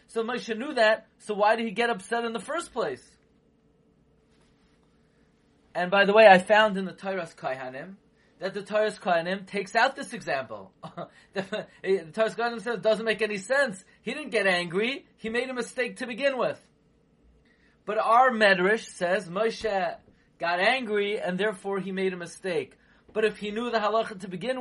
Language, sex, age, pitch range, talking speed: English, male, 30-49, 155-220 Hz, 175 wpm